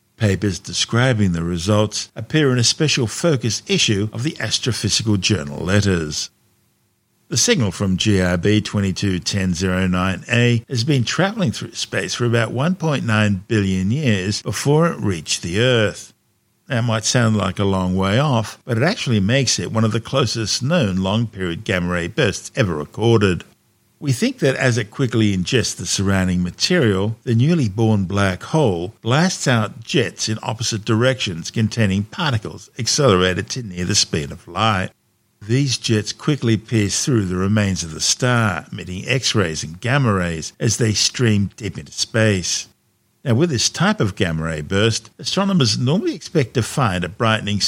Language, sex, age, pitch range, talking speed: English, male, 50-69, 95-125 Hz, 155 wpm